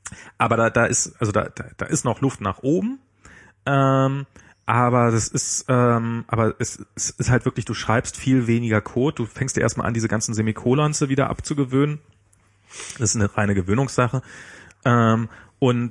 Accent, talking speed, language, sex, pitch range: German, 175 wpm, German, male, 105-125 Hz